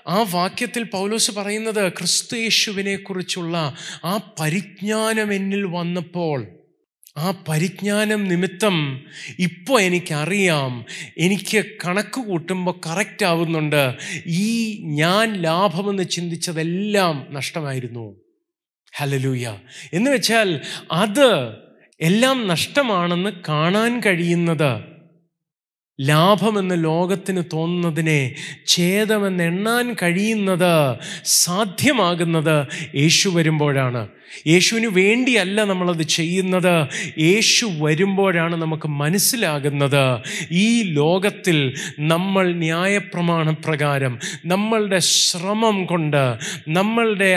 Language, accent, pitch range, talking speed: Malayalam, native, 160-200 Hz, 70 wpm